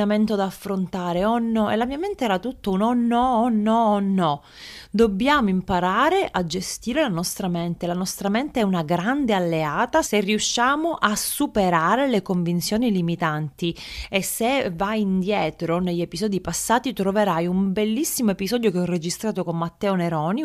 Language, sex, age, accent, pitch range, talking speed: Italian, female, 30-49, native, 180-240 Hz, 155 wpm